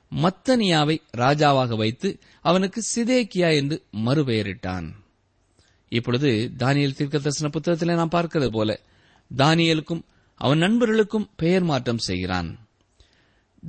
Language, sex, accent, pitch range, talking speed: Tamil, male, native, 110-170 Hz, 90 wpm